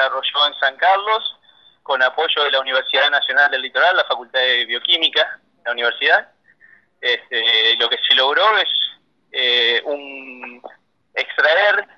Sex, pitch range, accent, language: male, 125-175 Hz, Argentinian, Spanish